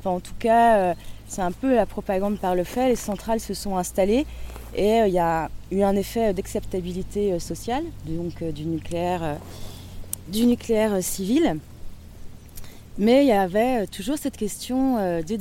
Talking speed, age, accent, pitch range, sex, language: 155 wpm, 20-39, French, 170-225 Hz, female, French